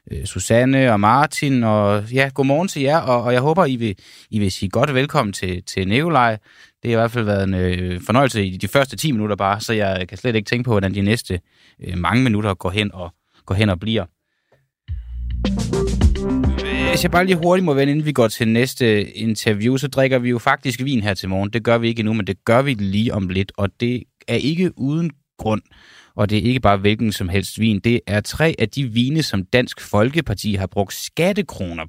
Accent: native